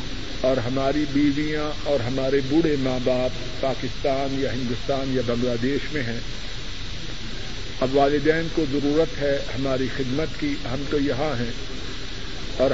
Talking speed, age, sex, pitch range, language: 135 wpm, 50-69, male, 125-145 Hz, Urdu